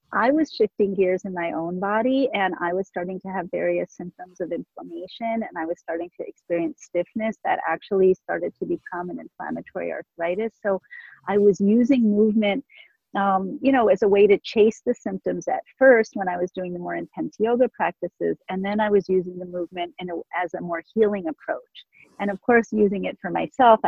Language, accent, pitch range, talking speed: English, American, 180-220 Hz, 200 wpm